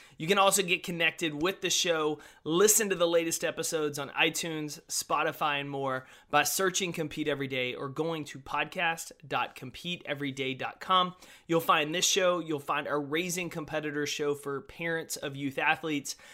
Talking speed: 155 wpm